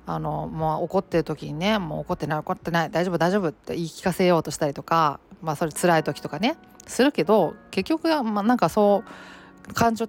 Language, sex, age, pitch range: Japanese, female, 40-59, 155-200 Hz